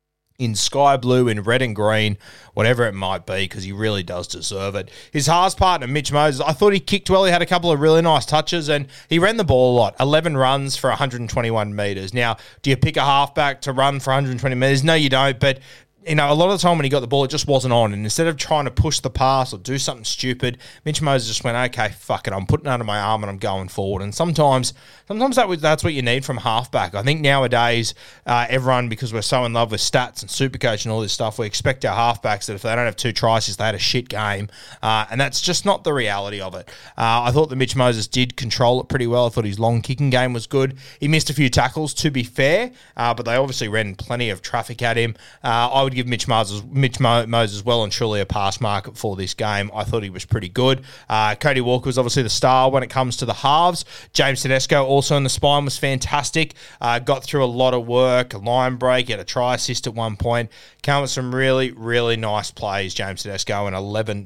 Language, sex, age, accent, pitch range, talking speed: English, male, 20-39, Australian, 110-140 Hz, 250 wpm